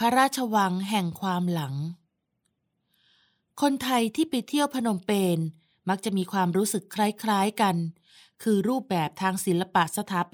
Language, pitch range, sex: Thai, 170-210 Hz, female